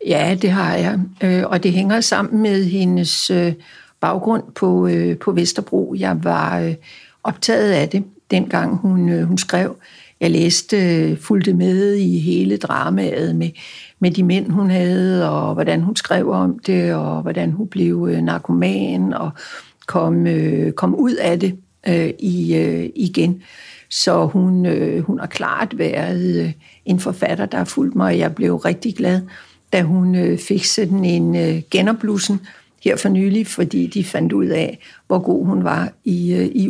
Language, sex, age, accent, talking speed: Danish, female, 60-79, native, 140 wpm